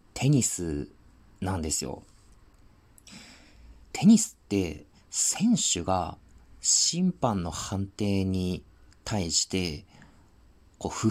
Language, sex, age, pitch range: Japanese, male, 40-59, 85-110 Hz